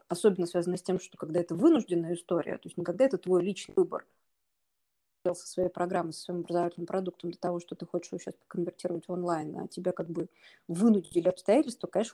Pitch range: 175-220 Hz